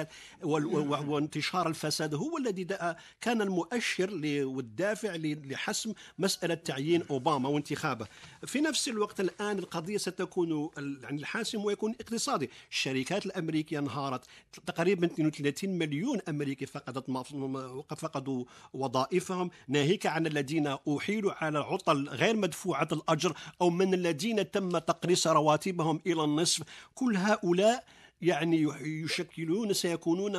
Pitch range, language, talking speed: 150-195 Hz, Arabic, 105 wpm